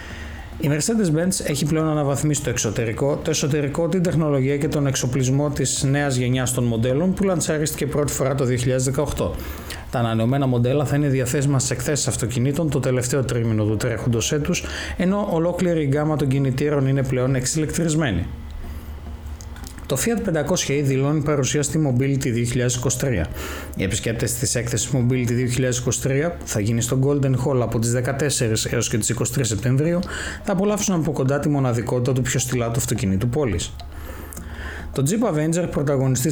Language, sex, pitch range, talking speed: Greek, male, 115-150 Hz, 155 wpm